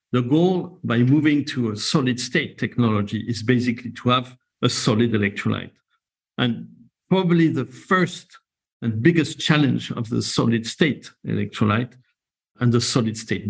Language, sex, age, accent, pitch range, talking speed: English, male, 50-69, French, 115-140 Hz, 140 wpm